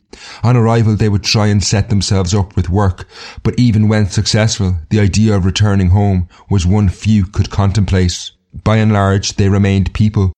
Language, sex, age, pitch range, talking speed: English, male, 30-49, 95-105 Hz, 180 wpm